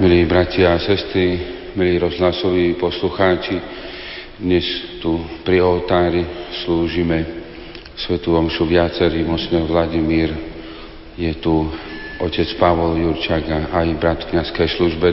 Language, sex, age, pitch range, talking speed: Slovak, male, 40-59, 85-95 Hz, 105 wpm